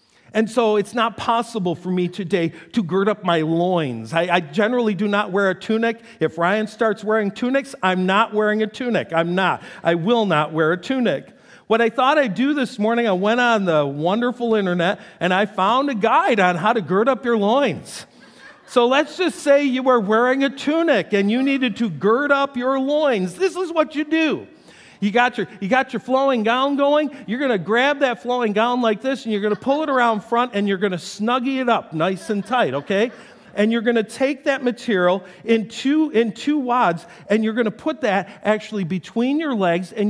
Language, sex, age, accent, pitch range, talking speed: English, male, 50-69, American, 200-255 Hz, 220 wpm